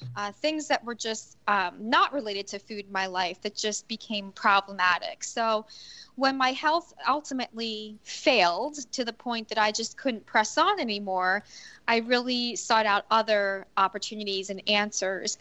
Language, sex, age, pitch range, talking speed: English, female, 20-39, 205-240 Hz, 160 wpm